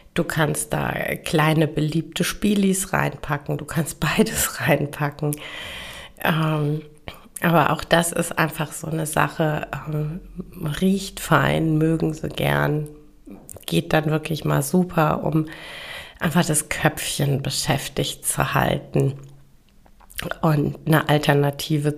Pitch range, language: 150-180 Hz, German